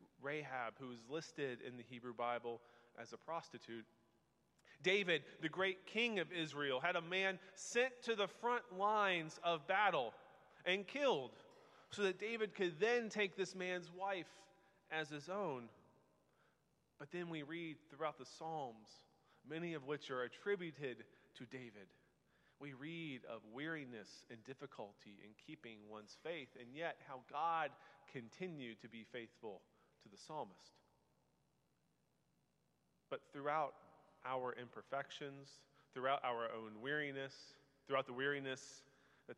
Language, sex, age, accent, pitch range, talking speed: English, male, 30-49, American, 125-170 Hz, 135 wpm